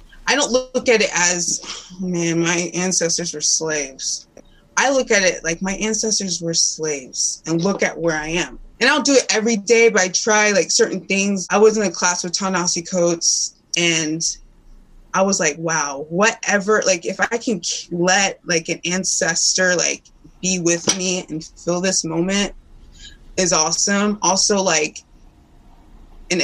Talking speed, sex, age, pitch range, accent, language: 165 wpm, female, 20-39, 165-195 Hz, American, English